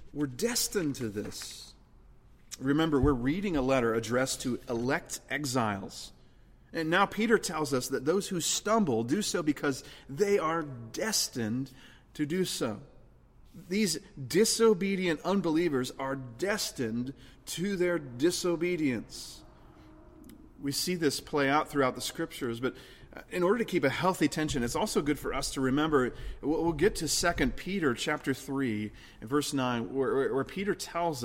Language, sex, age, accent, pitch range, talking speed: English, male, 30-49, American, 130-170 Hz, 145 wpm